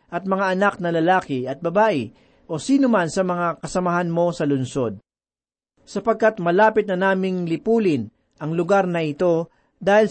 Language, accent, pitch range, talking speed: Filipino, native, 155-200 Hz, 155 wpm